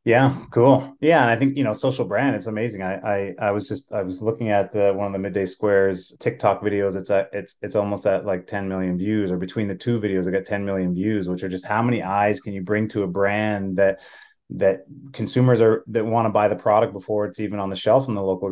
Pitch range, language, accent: 95-110 Hz, English, American